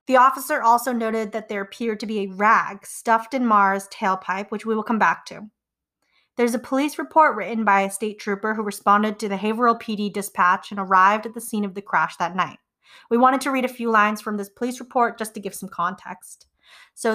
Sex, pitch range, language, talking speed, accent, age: female, 200-235 Hz, English, 225 wpm, American, 30-49